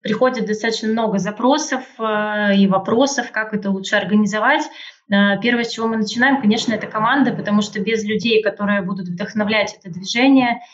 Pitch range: 205-230 Hz